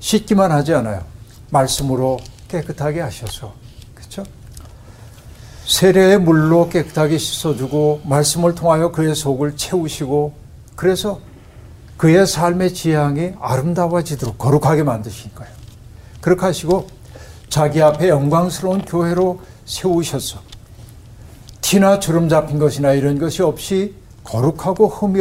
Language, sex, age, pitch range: Korean, male, 60-79, 115-165 Hz